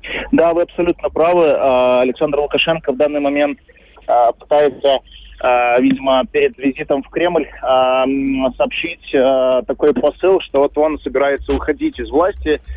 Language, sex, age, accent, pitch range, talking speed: Russian, male, 20-39, native, 135-165 Hz, 120 wpm